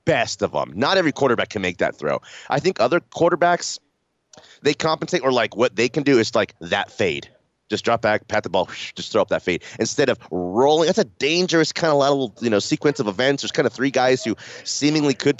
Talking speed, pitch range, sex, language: 235 wpm, 100-155 Hz, male, English